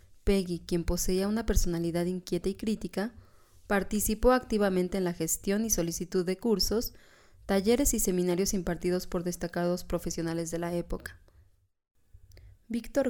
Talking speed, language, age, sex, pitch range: 130 wpm, Spanish, 20-39, female, 170-200 Hz